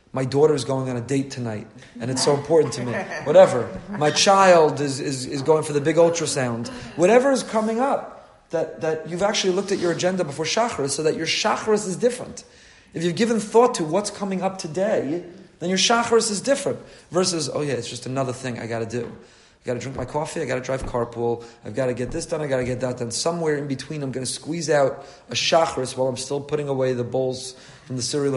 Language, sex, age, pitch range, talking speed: English, male, 30-49, 130-170 Hz, 240 wpm